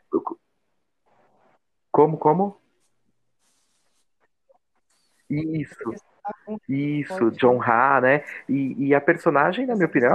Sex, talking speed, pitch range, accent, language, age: male, 85 wpm, 110-160 Hz, Brazilian, Portuguese, 30-49